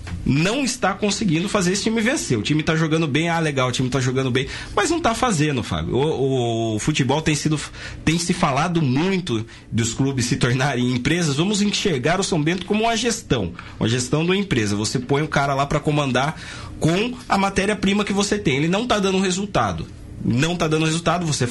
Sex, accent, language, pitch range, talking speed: male, Brazilian, Portuguese, 130-185 Hz, 210 wpm